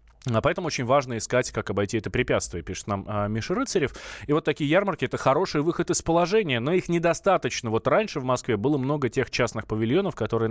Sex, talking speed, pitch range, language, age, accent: male, 205 wpm, 105-130 Hz, Russian, 20-39, native